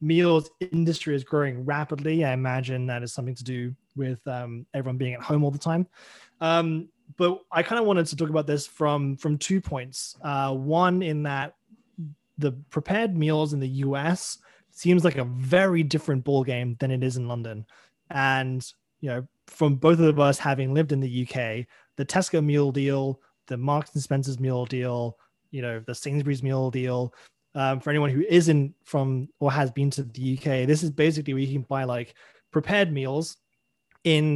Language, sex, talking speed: English, male, 190 wpm